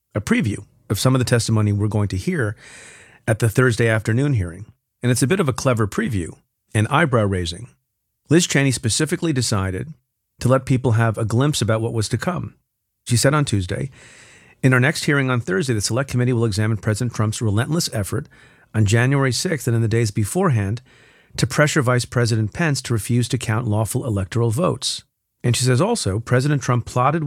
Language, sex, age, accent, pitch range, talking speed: English, male, 40-59, American, 110-130 Hz, 195 wpm